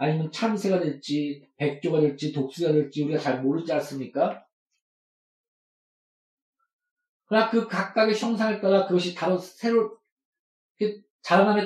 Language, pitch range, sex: Korean, 175-245 Hz, male